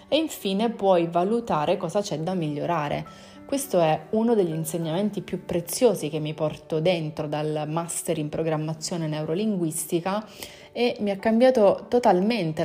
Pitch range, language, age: 155-200 Hz, Italian, 30-49